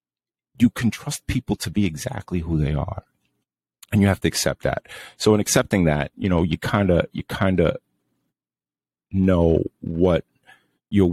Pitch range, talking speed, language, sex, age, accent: 75-95 Hz, 165 wpm, English, male, 30-49, American